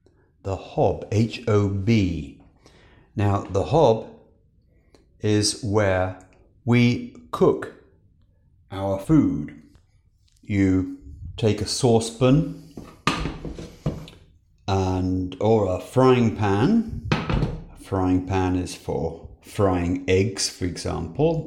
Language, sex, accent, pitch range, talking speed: English, male, British, 90-115 Hz, 80 wpm